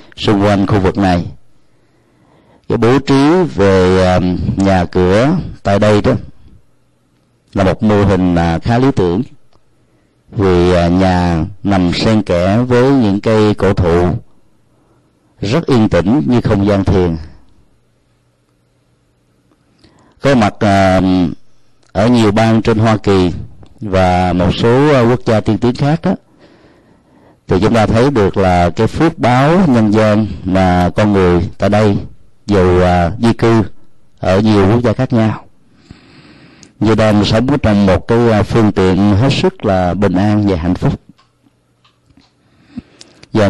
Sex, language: male, Vietnamese